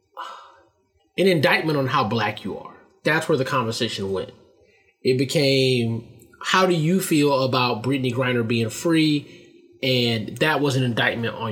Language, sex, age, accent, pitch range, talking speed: English, male, 20-39, American, 120-180 Hz, 150 wpm